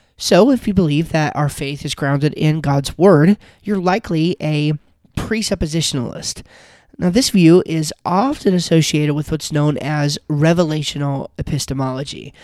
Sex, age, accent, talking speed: male, 30-49, American, 135 wpm